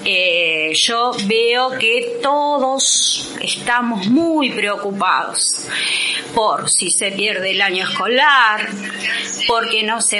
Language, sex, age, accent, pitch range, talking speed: Spanish, female, 30-49, Argentinian, 185-250 Hz, 105 wpm